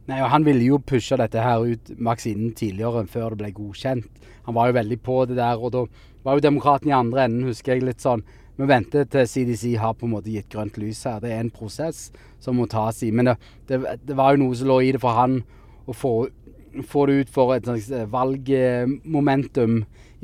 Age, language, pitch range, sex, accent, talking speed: 30-49, English, 115-135 Hz, male, Norwegian, 215 wpm